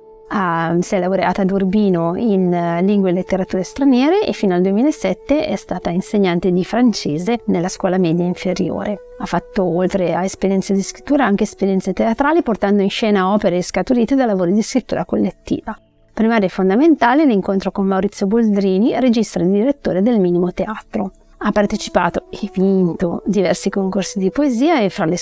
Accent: native